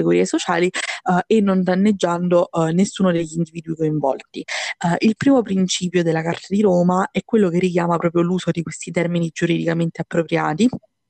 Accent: native